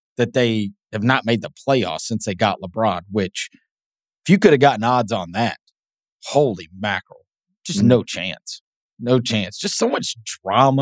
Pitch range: 115-175 Hz